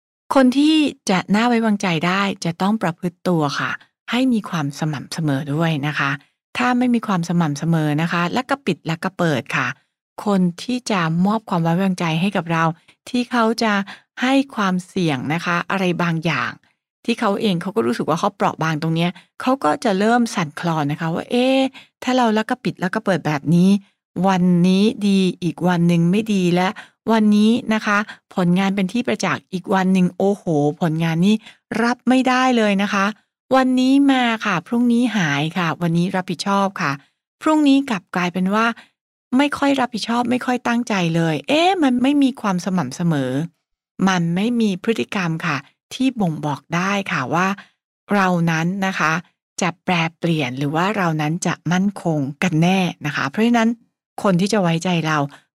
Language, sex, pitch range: English, female, 165-225 Hz